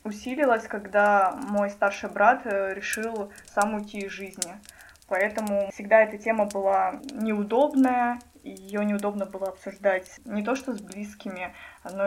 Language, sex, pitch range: Russian, female, 200-225 Hz